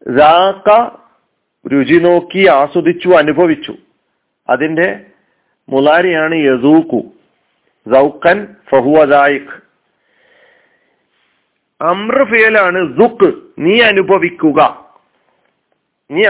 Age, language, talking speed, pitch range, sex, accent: 40-59, Malayalam, 35 wpm, 145-220 Hz, male, native